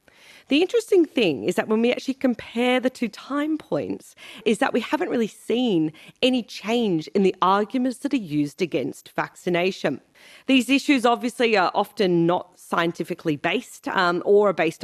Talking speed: 165 wpm